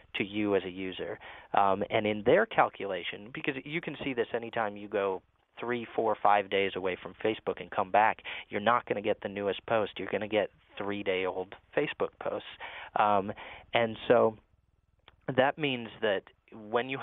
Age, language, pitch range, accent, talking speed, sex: 30-49, English, 100-130 Hz, American, 185 wpm, male